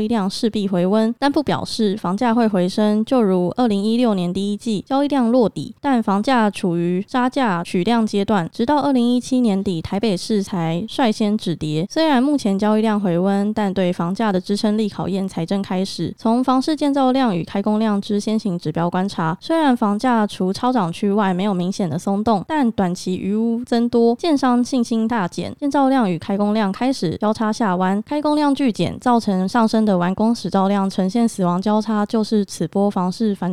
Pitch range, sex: 190-235 Hz, female